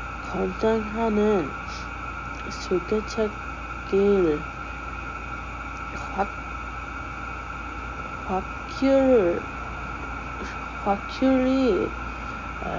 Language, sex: English, female